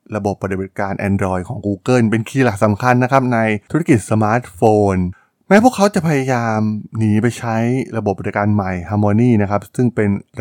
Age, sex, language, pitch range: 20-39, male, Thai, 100-130 Hz